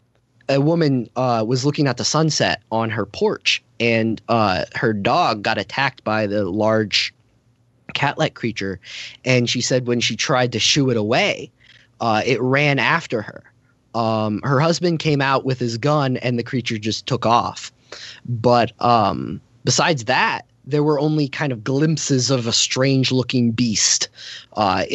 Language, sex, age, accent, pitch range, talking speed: English, male, 20-39, American, 115-145 Hz, 165 wpm